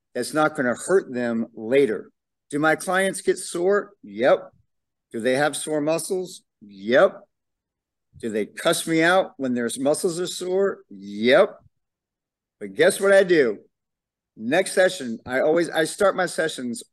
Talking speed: 150 wpm